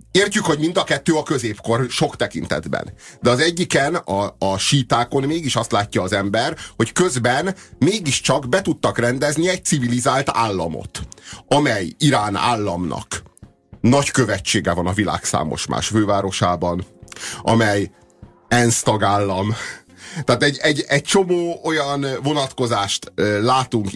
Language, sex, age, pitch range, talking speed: Hungarian, male, 30-49, 105-145 Hz, 130 wpm